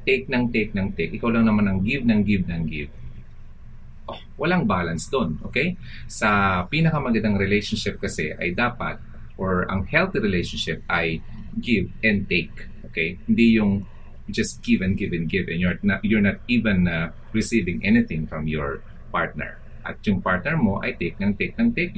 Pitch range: 90-115 Hz